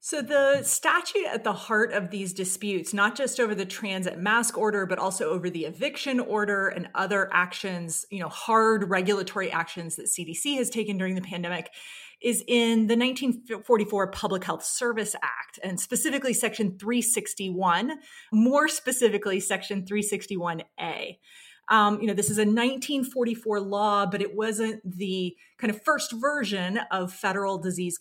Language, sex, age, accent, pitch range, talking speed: English, female, 30-49, American, 185-230 Hz, 155 wpm